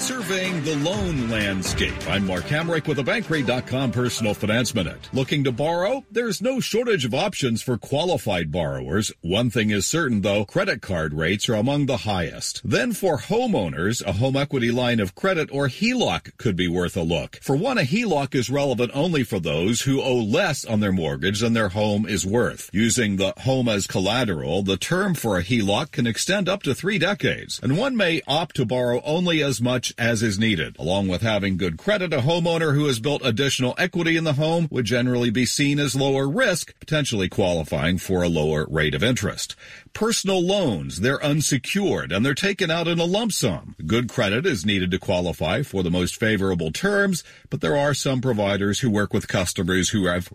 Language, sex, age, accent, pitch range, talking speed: English, male, 50-69, American, 100-145 Hz, 195 wpm